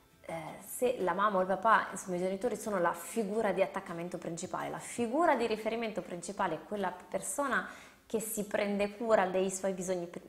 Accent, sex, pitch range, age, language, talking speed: native, female, 175-210 Hz, 20-39, Italian, 175 wpm